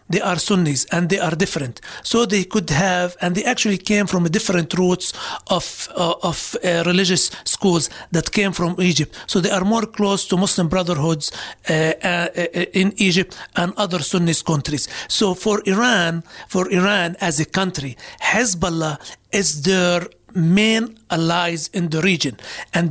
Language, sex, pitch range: English, male, 165-195 Hz